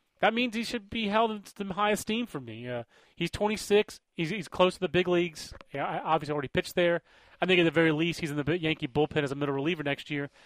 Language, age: English, 30-49